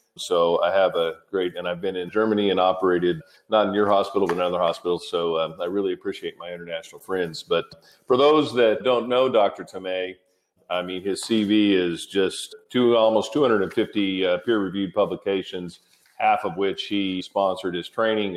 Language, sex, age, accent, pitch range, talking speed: English, male, 40-59, American, 90-120 Hz, 180 wpm